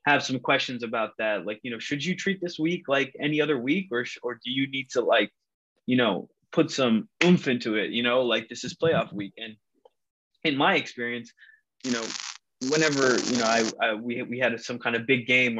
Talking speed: 220 wpm